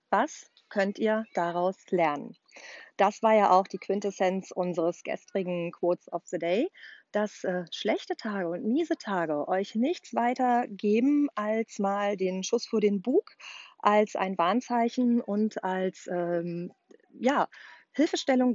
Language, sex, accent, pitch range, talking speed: German, female, German, 190-250 Hz, 140 wpm